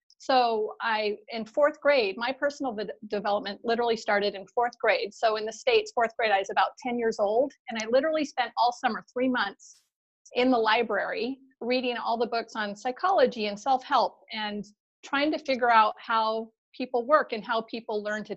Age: 30-49